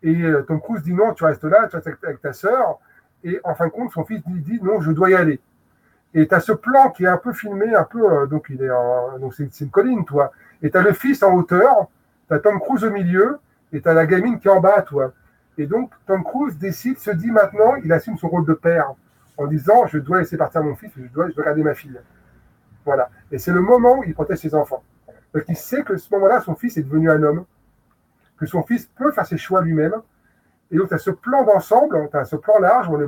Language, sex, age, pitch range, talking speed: French, male, 30-49, 145-195 Hz, 260 wpm